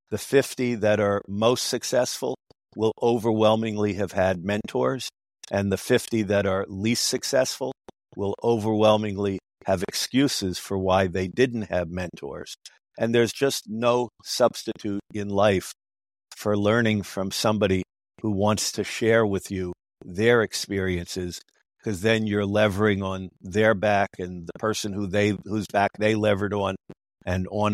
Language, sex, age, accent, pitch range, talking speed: English, male, 50-69, American, 95-110 Hz, 145 wpm